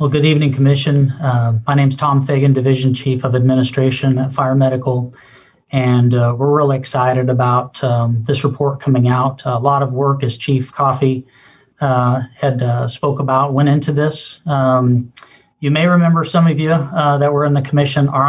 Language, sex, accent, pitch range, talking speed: English, male, American, 130-145 Hz, 185 wpm